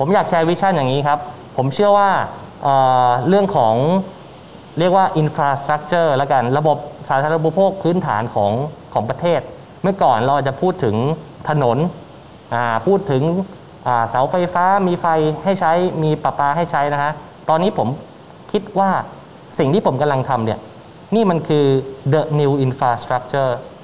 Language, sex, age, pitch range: Thai, male, 20-39, 130-165 Hz